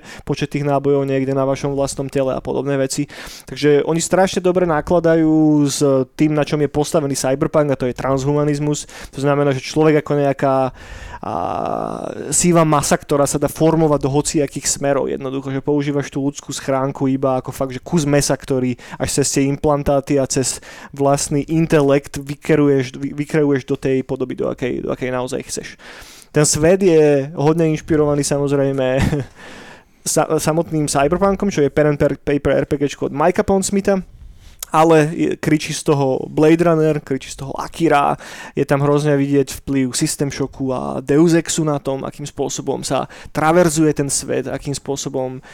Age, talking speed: 20-39, 165 wpm